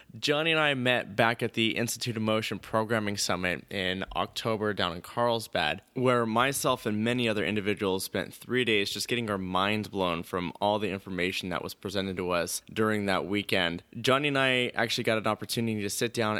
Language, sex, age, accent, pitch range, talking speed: English, male, 20-39, American, 100-120 Hz, 195 wpm